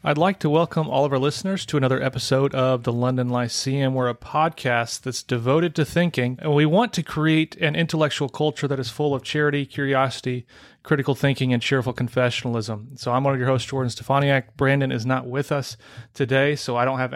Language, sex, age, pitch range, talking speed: English, male, 30-49, 125-145 Hz, 205 wpm